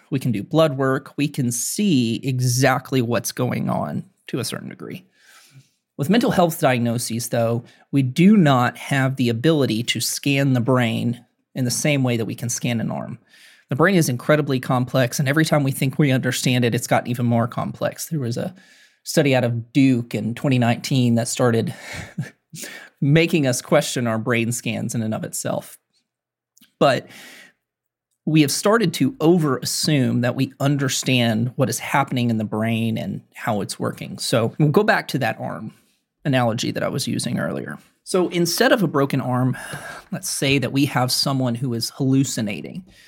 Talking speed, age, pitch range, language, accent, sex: 175 wpm, 30-49, 120-145 Hz, English, American, male